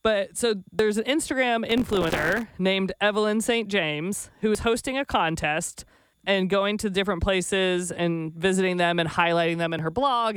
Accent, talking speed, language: American, 170 wpm, English